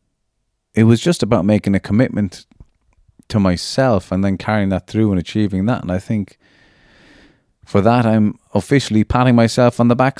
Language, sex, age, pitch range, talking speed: English, male, 30-49, 90-125 Hz, 170 wpm